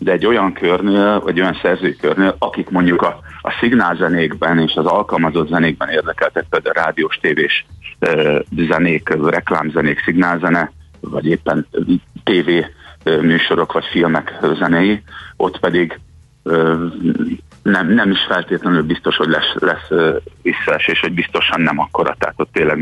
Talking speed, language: 135 wpm, Hungarian